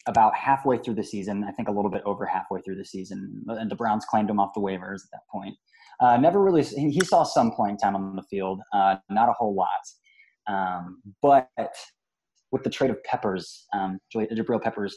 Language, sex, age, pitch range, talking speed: English, male, 20-39, 100-130 Hz, 215 wpm